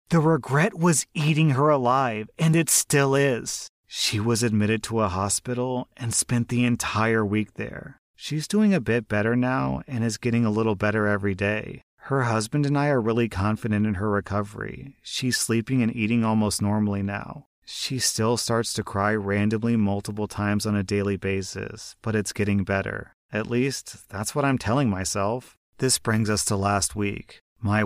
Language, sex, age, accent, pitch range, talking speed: English, male, 30-49, American, 105-155 Hz, 180 wpm